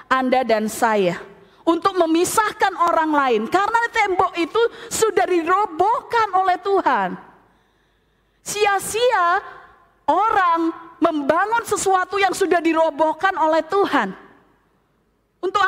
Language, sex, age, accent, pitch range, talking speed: English, female, 20-39, Indonesian, 235-360 Hz, 90 wpm